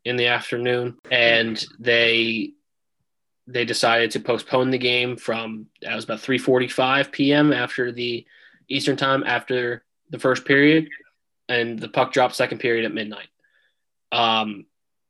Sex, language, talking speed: male, English, 140 wpm